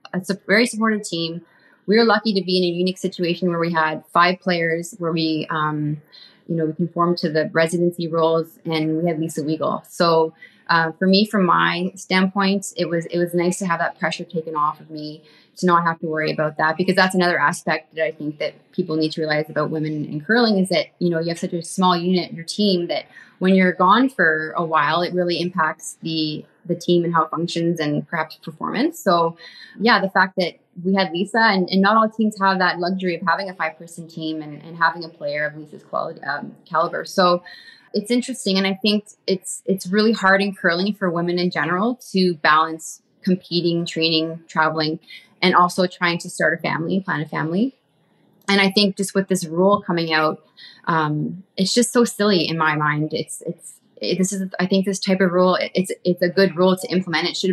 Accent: American